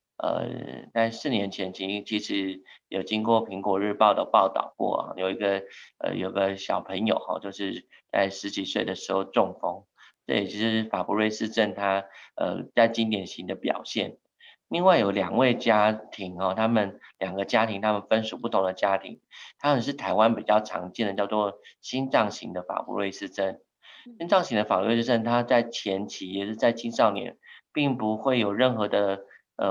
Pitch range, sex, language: 100-115 Hz, male, Chinese